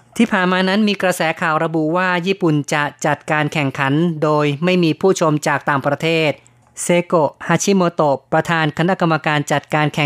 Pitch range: 145-165 Hz